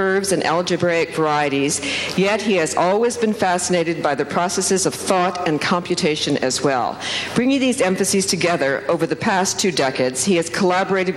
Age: 50-69